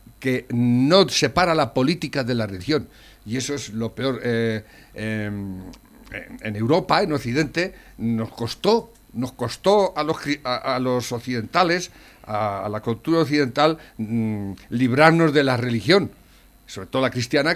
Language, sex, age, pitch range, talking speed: Spanish, male, 60-79, 115-175 Hz, 140 wpm